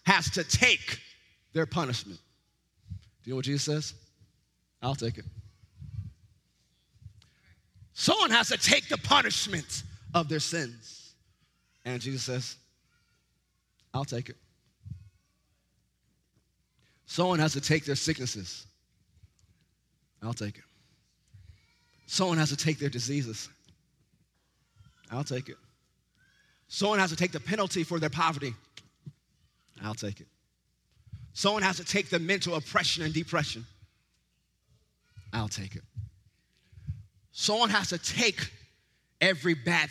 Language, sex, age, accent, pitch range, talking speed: English, male, 30-49, American, 105-150 Hz, 115 wpm